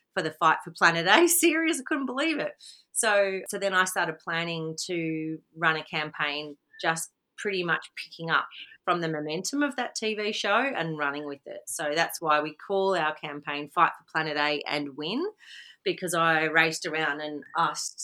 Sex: female